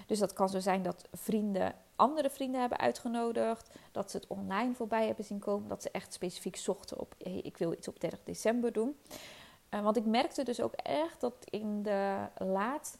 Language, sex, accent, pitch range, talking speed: Dutch, female, Dutch, 195-250 Hz, 200 wpm